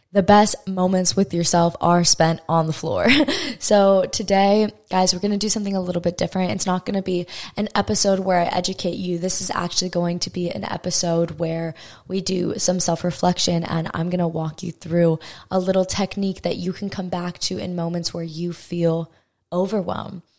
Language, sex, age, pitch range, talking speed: English, female, 20-39, 170-190 Hz, 200 wpm